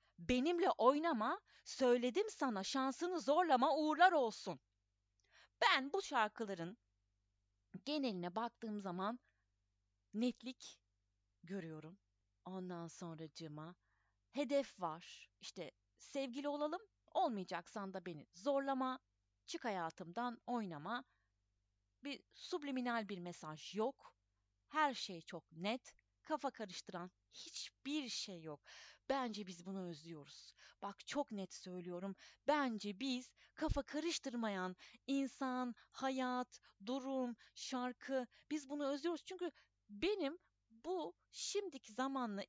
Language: Turkish